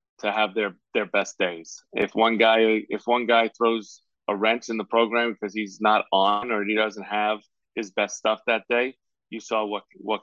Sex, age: male, 20-39